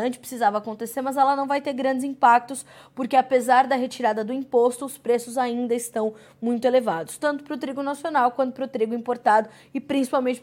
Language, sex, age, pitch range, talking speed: Portuguese, female, 20-39, 205-245 Hz, 190 wpm